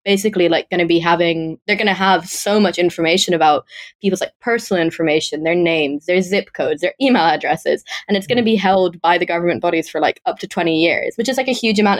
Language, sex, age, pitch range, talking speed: English, female, 20-39, 165-200 Hz, 240 wpm